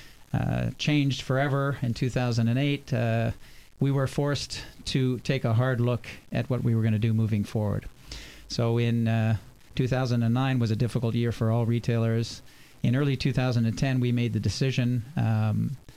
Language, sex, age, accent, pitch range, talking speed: English, male, 40-59, American, 115-130 Hz, 160 wpm